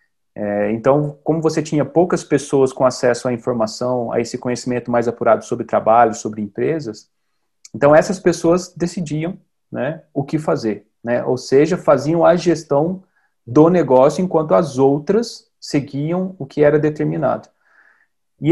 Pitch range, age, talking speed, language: 125-170 Hz, 30-49, 145 wpm, Portuguese